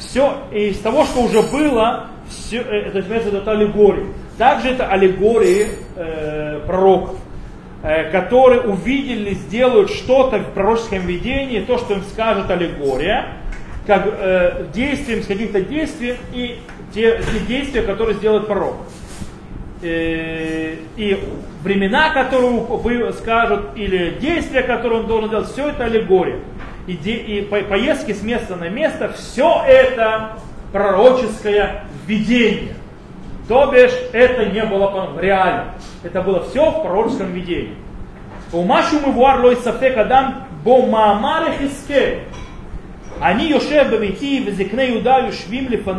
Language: Russian